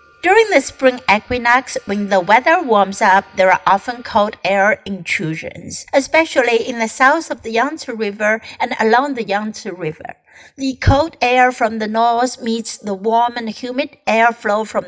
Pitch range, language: 205-275 Hz, Chinese